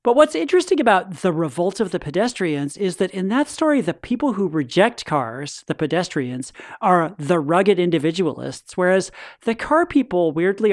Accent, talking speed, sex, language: American, 170 wpm, male, English